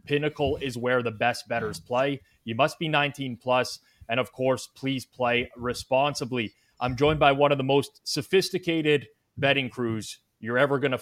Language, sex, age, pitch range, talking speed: English, male, 20-39, 115-145 Hz, 170 wpm